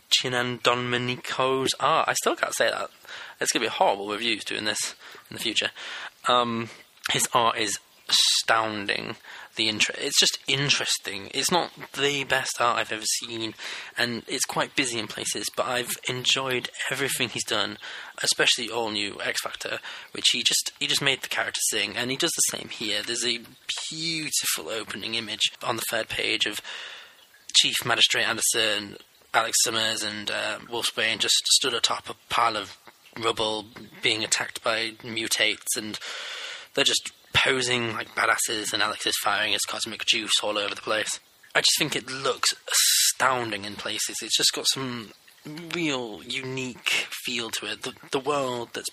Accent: British